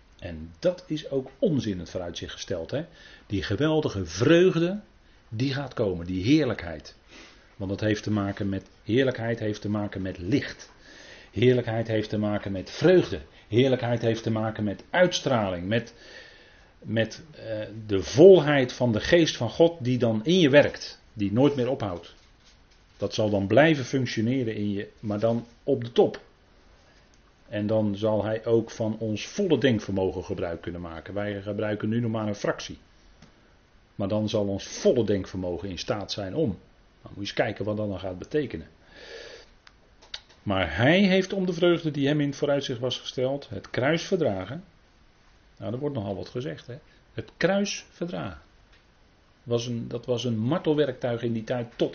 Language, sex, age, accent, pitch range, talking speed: Dutch, male, 40-59, Dutch, 100-135 Hz, 170 wpm